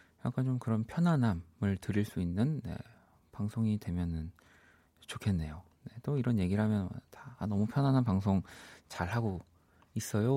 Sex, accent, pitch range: male, native, 90-125 Hz